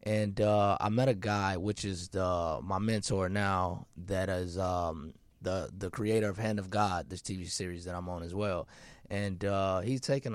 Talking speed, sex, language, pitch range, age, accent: 195 wpm, male, English, 90-105 Hz, 20-39, American